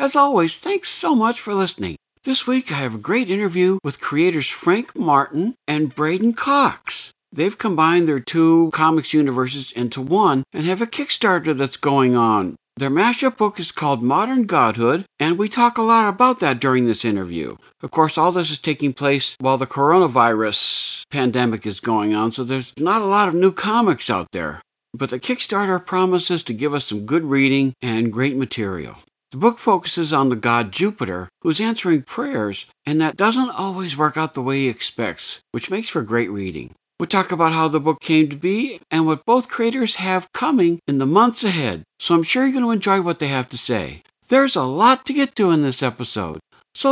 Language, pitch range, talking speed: English, 130-210 Hz, 200 wpm